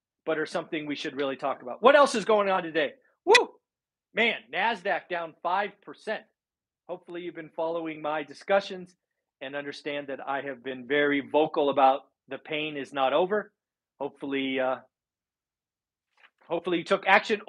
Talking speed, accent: 155 wpm, American